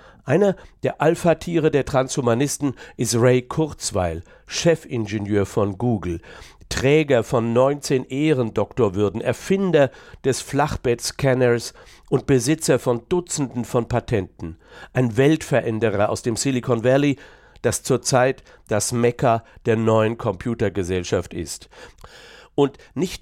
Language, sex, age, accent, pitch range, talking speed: German, male, 60-79, German, 115-140 Hz, 105 wpm